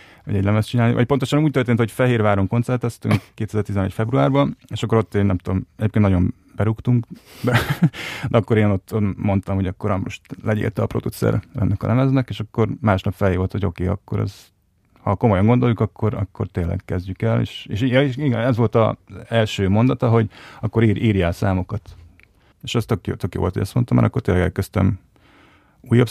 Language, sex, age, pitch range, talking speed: Hungarian, male, 30-49, 100-120 Hz, 180 wpm